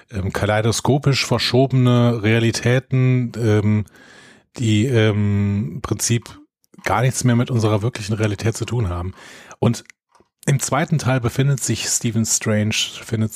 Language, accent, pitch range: German, German, 105-125 Hz